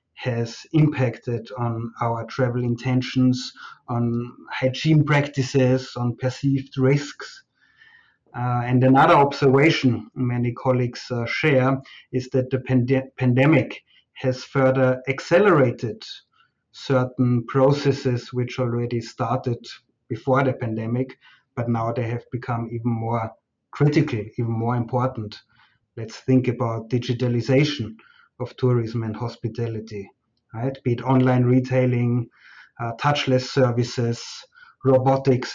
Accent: German